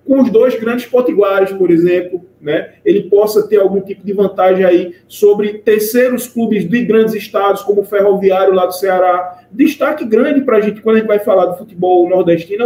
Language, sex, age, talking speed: Portuguese, male, 20-39, 195 wpm